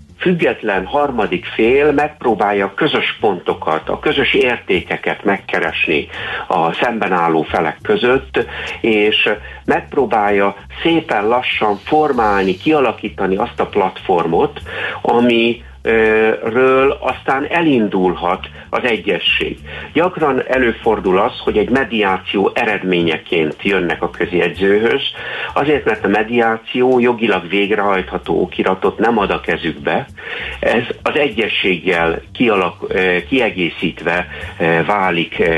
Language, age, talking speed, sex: Hungarian, 60-79, 95 wpm, male